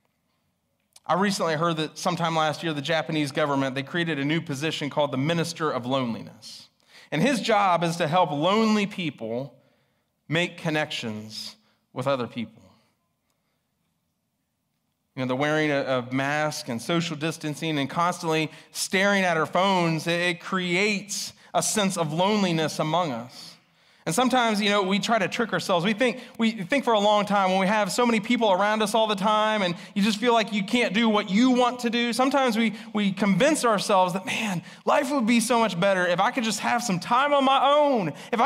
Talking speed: 190 wpm